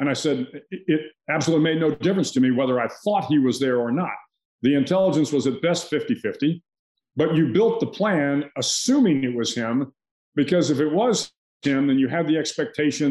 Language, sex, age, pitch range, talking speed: English, male, 50-69, 130-155 Hz, 195 wpm